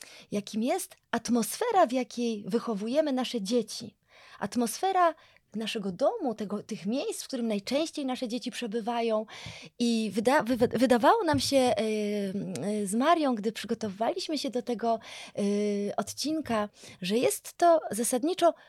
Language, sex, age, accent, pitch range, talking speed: Polish, female, 20-39, native, 225-275 Hz, 110 wpm